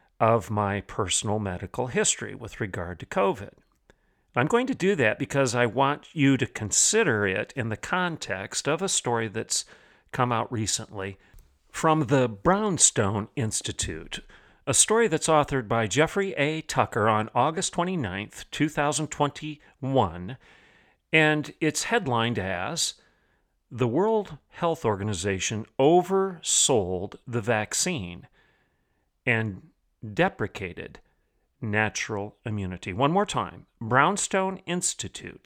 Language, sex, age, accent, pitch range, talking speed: English, male, 50-69, American, 105-155 Hz, 115 wpm